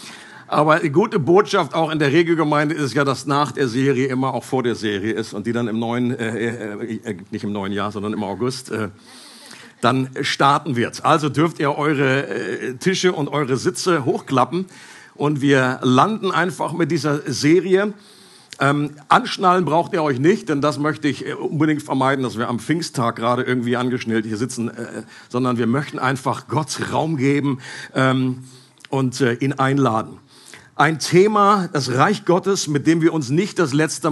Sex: male